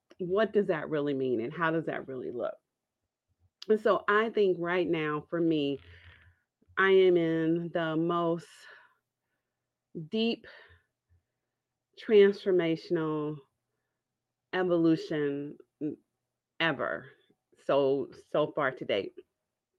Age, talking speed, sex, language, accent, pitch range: 30-49, 100 wpm, female, English, American, 150-185 Hz